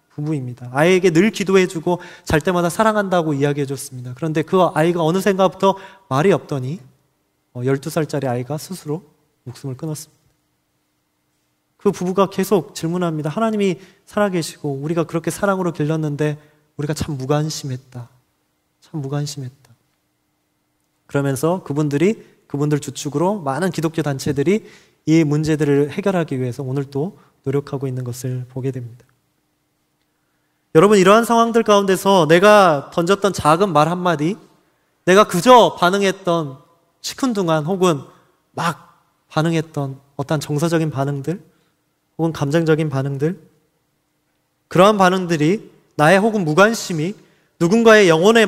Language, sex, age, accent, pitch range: Korean, male, 20-39, native, 145-185 Hz